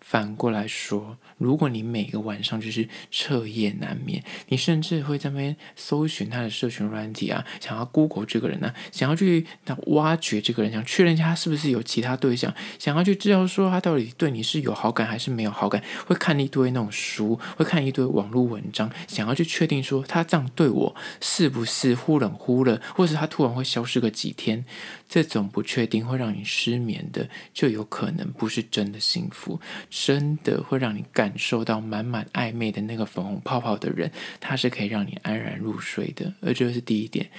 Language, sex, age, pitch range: Chinese, male, 20-39, 110-155 Hz